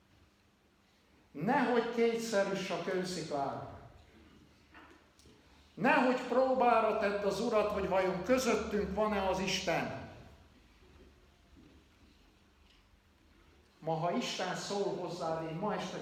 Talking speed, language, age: 90 wpm, Hungarian, 60-79